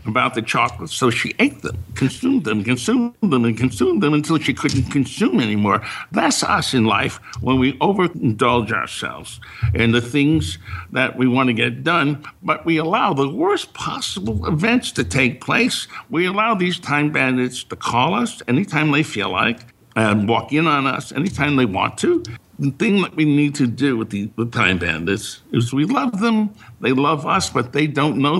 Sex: male